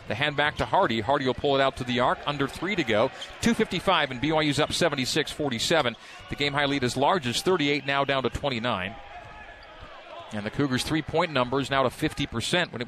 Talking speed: 195 wpm